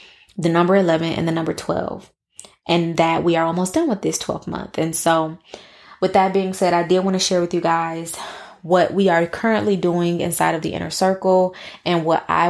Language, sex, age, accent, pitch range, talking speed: English, female, 20-39, American, 165-185 Hz, 210 wpm